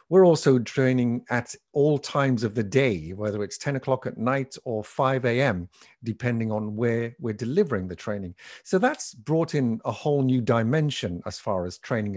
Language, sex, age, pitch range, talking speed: English, male, 50-69, 105-140 Hz, 180 wpm